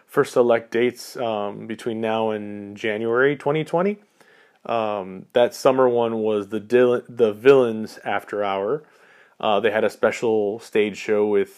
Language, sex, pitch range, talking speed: English, male, 105-120 Hz, 145 wpm